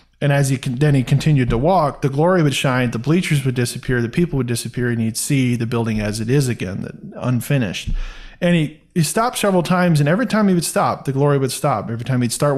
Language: English